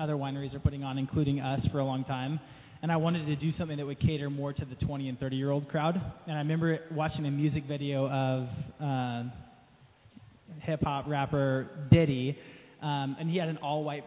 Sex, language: male, English